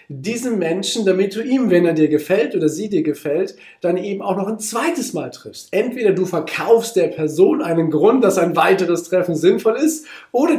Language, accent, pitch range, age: German, German, 145-195 Hz, 40-59